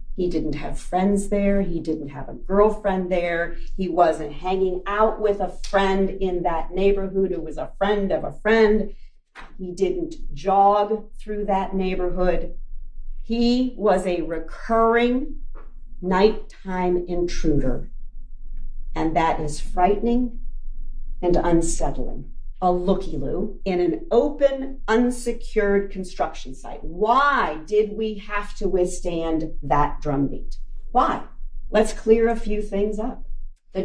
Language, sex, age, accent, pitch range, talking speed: English, female, 50-69, American, 180-230 Hz, 125 wpm